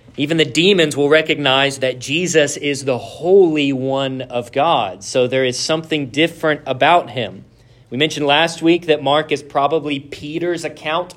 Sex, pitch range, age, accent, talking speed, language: male, 125-160 Hz, 40-59, American, 160 wpm, English